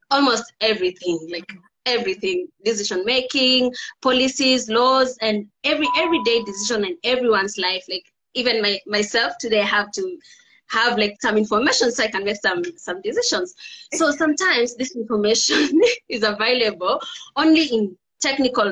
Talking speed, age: 135 wpm, 20-39